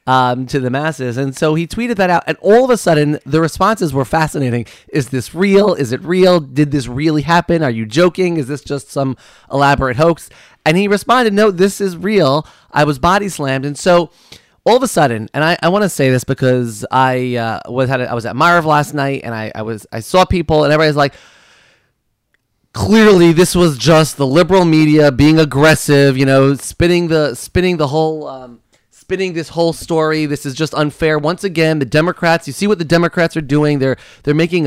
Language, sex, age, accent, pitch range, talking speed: English, male, 30-49, American, 130-170 Hz, 210 wpm